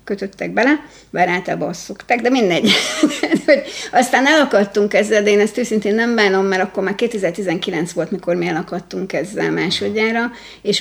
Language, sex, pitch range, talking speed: Hungarian, female, 175-220 Hz, 155 wpm